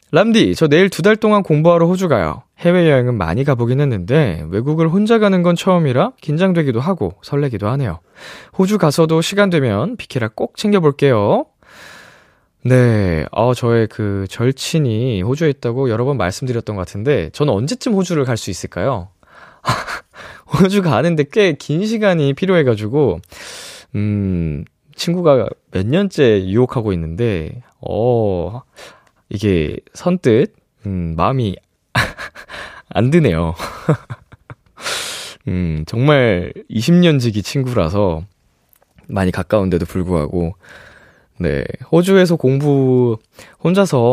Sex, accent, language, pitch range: male, native, Korean, 100-165 Hz